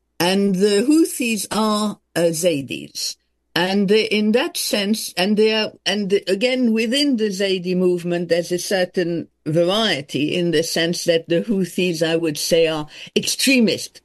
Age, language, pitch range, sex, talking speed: 60-79, English, 170-220 Hz, female, 150 wpm